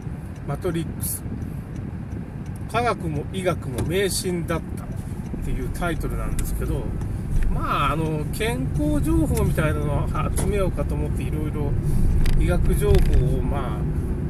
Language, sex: Japanese, male